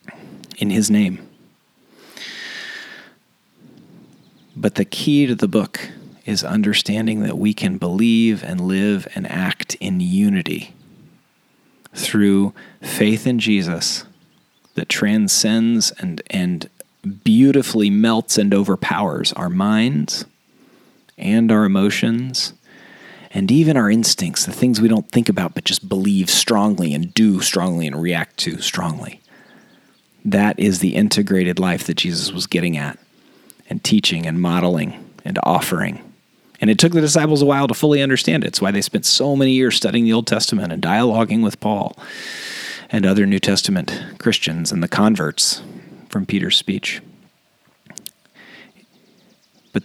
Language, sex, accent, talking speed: English, male, American, 135 wpm